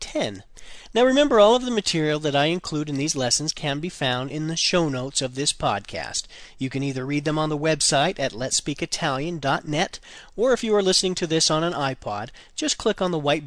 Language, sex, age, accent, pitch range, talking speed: Italian, male, 40-59, American, 120-170 Hz, 215 wpm